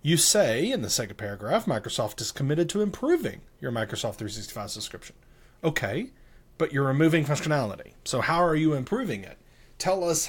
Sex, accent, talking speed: male, American, 165 wpm